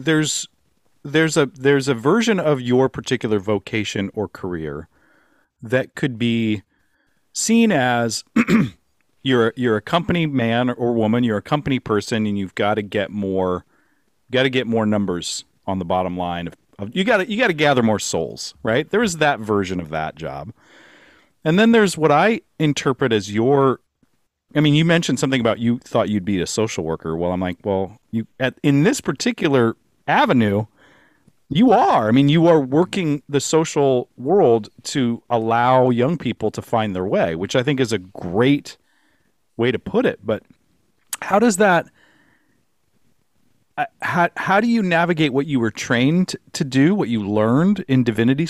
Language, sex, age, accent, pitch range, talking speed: English, male, 40-59, American, 105-155 Hz, 175 wpm